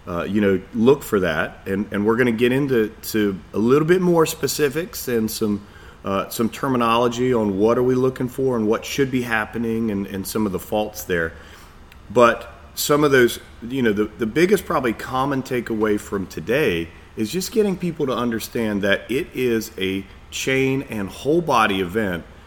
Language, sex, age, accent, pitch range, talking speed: English, male, 40-59, American, 100-130 Hz, 190 wpm